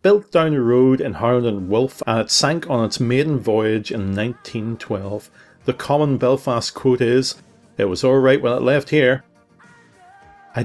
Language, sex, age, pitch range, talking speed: English, male, 40-59, 110-140 Hz, 170 wpm